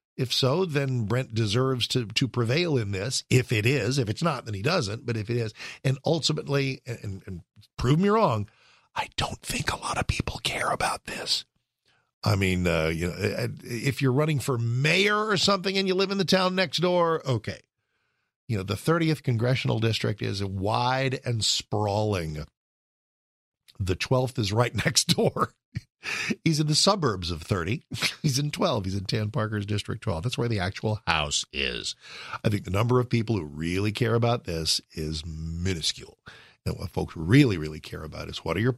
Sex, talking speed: male, 190 wpm